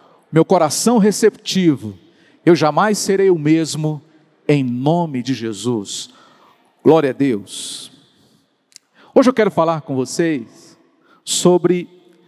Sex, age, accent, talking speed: male, 50-69, Brazilian, 110 wpm